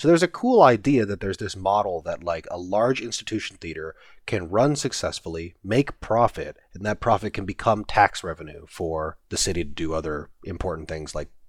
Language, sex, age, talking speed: English, male, 30-49, 190 wpm